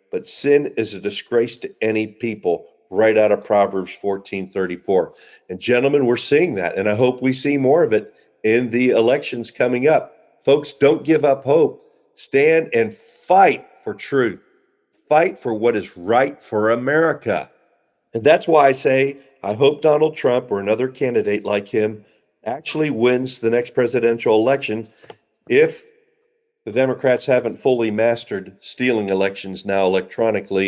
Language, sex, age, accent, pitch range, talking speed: English, male, 50-69, American, 100-140 Hz, 155 wpm